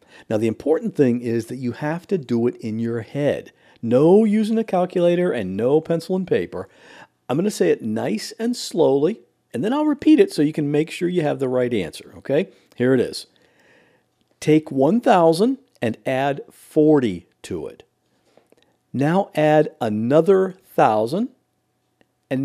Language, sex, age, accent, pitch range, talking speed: English, male, 50-69, American, 120-205 Hz, 165 wpm